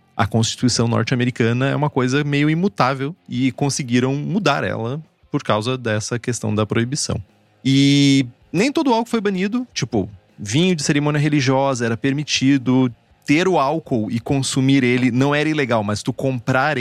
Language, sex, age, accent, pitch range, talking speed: Portuguese, male, 30-49, Brazilian, 110-150 Hz, 155 wpm